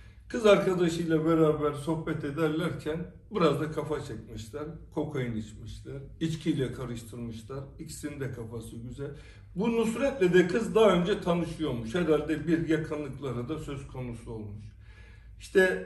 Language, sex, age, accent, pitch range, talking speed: Turkish, male, 60-79, native, 110-170 Hz, 120 wpm